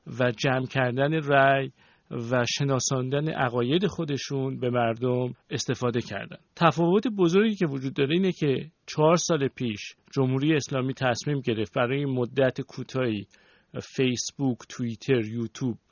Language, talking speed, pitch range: Persian, 120 wpm, 115-150 Hz